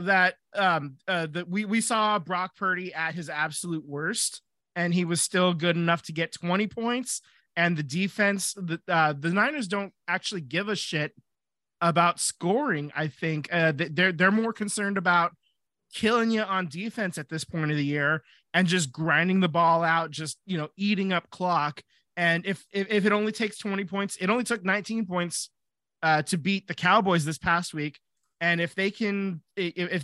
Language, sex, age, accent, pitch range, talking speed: English, male, 20-39, American, 160-190 Hz, 190 wpm